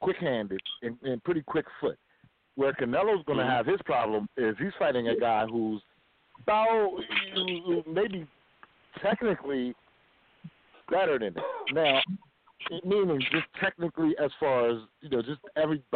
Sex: male